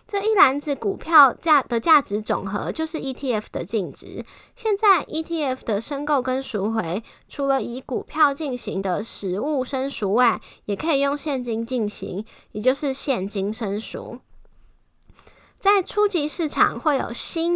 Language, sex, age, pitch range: Chinese, female, 10-29, 205-270 Hz